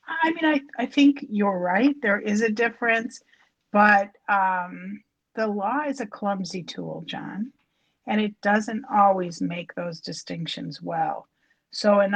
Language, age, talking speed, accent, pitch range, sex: English, 50-69, 150 wpm, American, 175-215 Hz, female